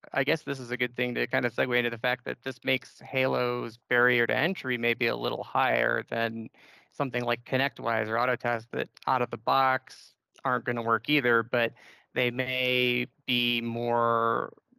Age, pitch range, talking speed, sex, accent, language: 20-39, 120-135 Hz, 185 wpm, male, American, English